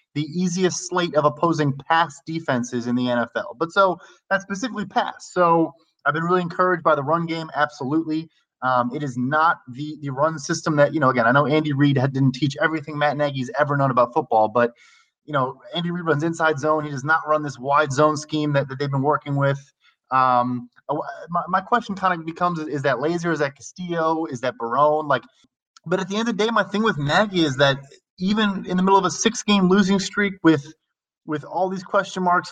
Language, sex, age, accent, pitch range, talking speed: English, male, 20-39, American, 145-180 Hz, 215 wpm